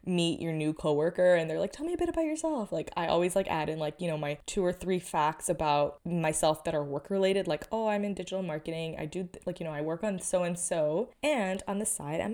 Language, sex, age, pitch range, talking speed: English, female, 20-39, 165-205 Hz, 265 wpm